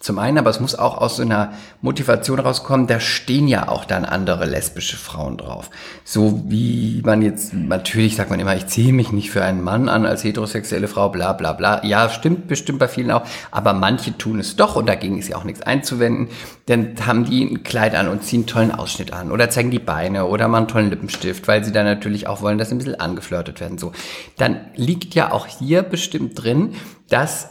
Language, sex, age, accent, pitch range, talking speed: German, male, 50-69, German, 105-125 Hz, 220 wpm